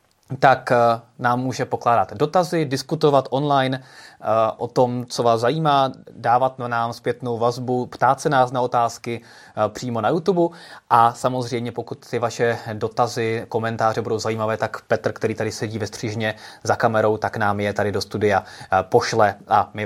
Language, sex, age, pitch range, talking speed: Czech, male, 20-39, 110-140 Hz, 155 wpm